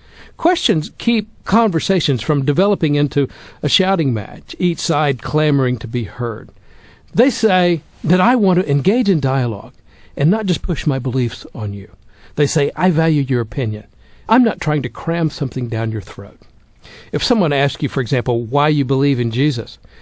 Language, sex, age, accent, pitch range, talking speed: English, male, 60-79, American, 130-200 Hz, 175 wpm